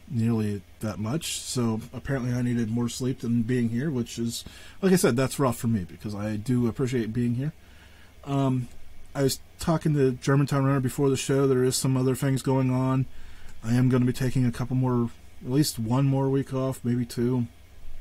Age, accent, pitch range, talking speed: 30-49, American, 90-130 Hz, 205 wpm